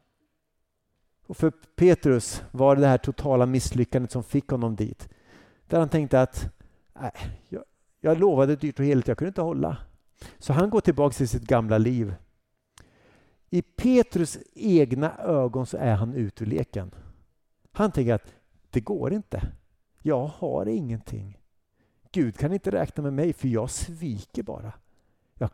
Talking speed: 150 wpm